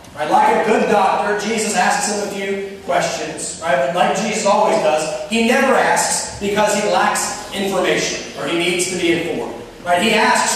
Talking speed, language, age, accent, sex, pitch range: 180 wpm, English, 30-49, American, male, 170-230 Hz